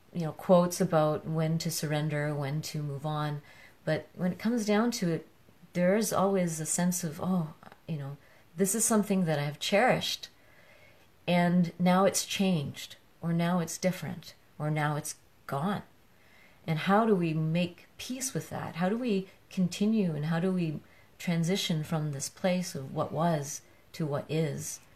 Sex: female